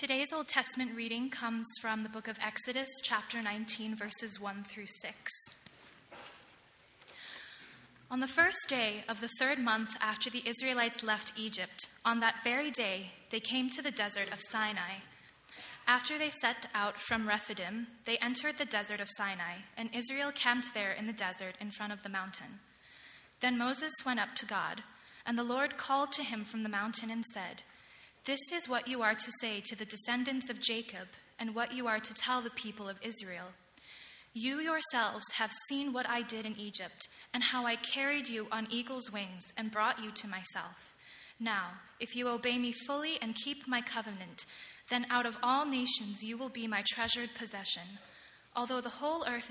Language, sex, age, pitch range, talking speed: English, female, 20-39, 210-250 Hz, 180 wpm